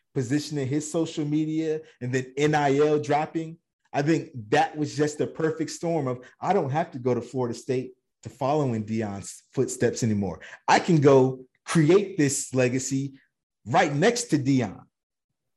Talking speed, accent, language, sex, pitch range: 160 wpm, American, English, male, 125-160 Hz